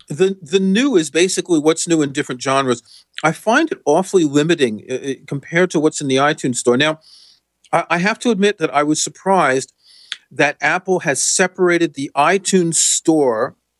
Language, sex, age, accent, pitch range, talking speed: English, male, 40-59, American, 130-170 Hz, 175 wpm